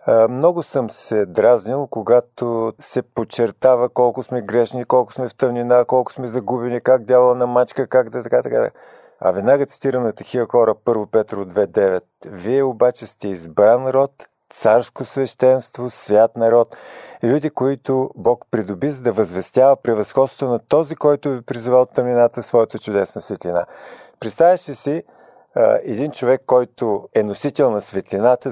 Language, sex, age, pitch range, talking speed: Bulgarian, male, 50-69, 110-135 Hz, 145 wpm